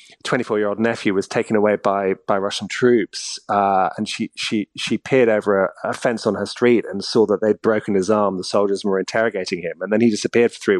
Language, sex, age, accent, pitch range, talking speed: English, male, 30-49, British, 100-125 Hz, 220 wpm